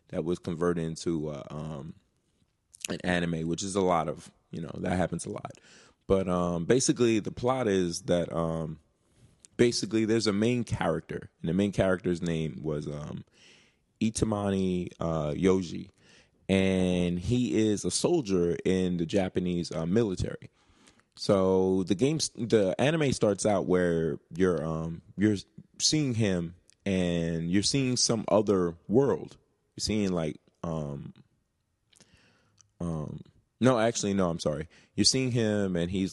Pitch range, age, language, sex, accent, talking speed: 85-105 Hz, 20-39, English, male, American, 145 wpm